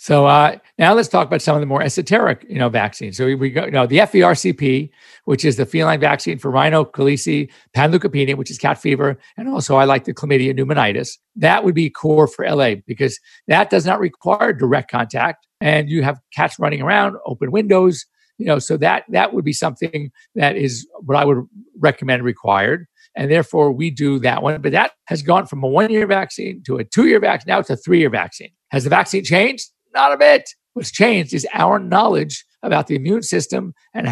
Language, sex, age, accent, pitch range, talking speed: English, male, 50-69, American, 135-170 Hz, 205 wpm